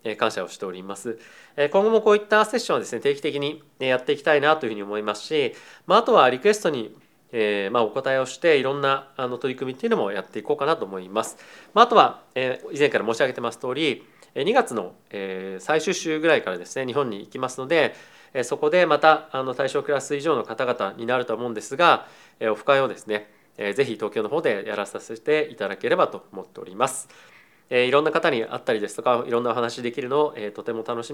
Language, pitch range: Japanese, 115-160 Hz